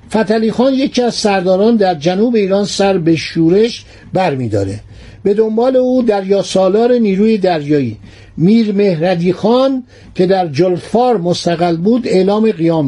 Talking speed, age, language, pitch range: 140 wpm, 60-79, Persian, 170-225 Hz